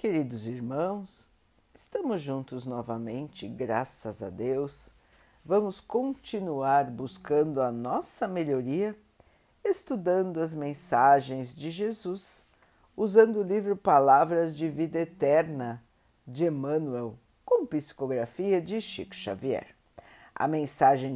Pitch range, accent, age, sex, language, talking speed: 135-195 Hz, Brazilian, 50-69, female, Portuguese, 100 wpm